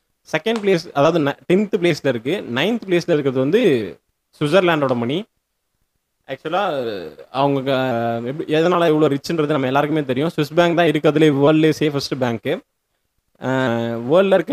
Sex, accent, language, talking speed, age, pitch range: male, native, Tamil, 130 wpm, 20-39, 130-170 Hz